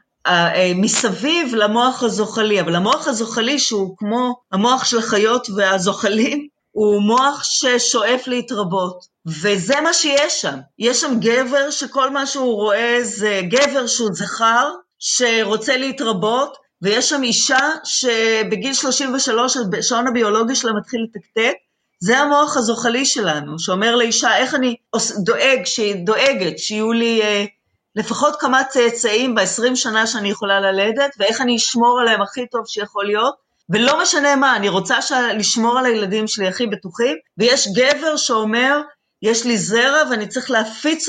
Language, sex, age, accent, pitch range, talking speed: Hebrew, female, 30-49, native, 210-265 Hz, 135 wpm